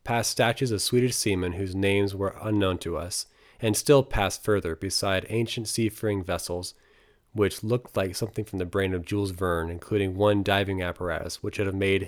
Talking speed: 185 wpm